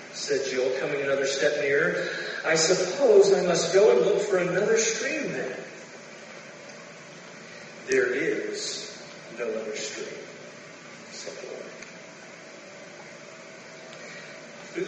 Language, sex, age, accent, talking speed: English, male, 40-59, American, 100 wpm